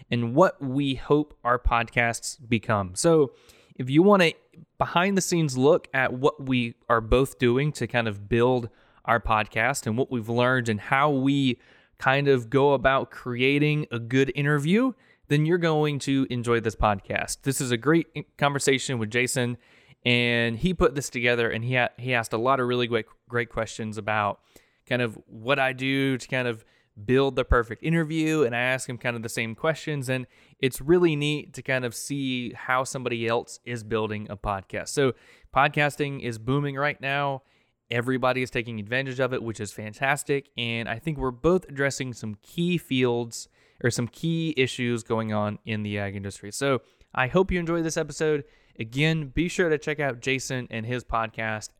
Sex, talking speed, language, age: male, 185 wpm, English, 20-39